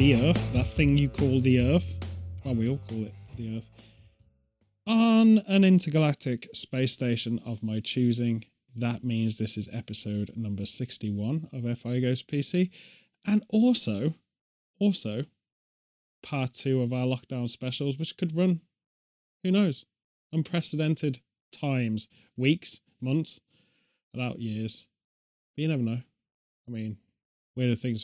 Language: English